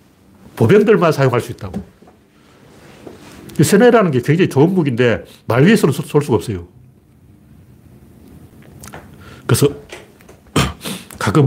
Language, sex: Korean, male